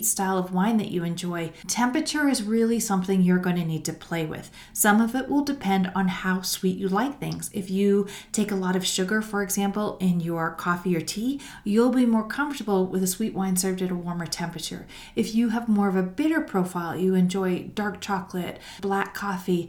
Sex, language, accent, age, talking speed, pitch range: female, English, American, 40-59, 210 wpm, 175-220 Hz